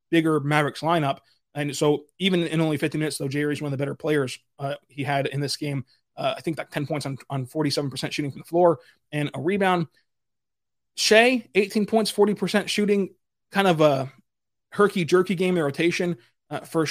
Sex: male